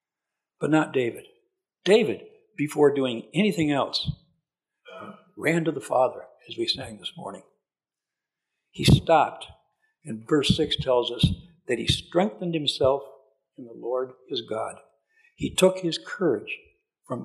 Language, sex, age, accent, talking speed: English, male, 60-79, American, 130 wpm